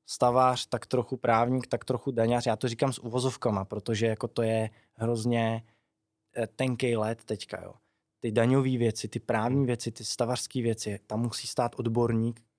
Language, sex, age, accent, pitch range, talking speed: Czech, male, 20-39, native, 120-135 Hz, 160 wpm